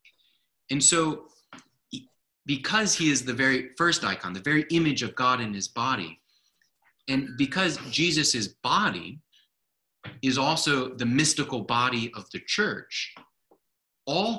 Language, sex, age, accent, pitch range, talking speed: English, male, 30-49, American, 120-165 Hz, 125 wpm